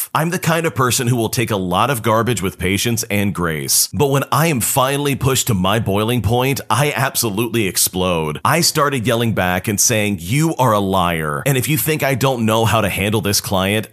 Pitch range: 100-140 Hz